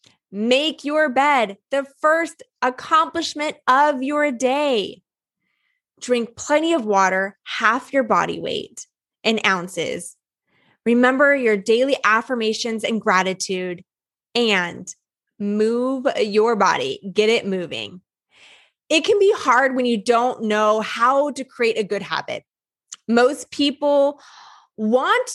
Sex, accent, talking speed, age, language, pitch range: female, American, 115 wpm, 20-39, English, 220-310 Hz